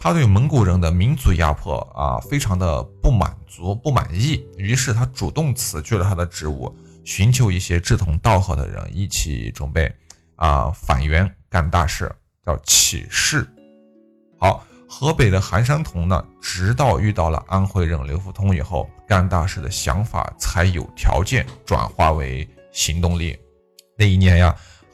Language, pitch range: Chinese, 85-115 Hz